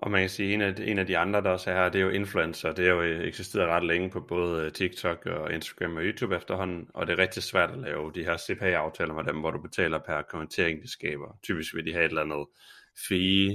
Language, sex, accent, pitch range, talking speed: Danish, male, native, 80-90 Hz, 260 wpm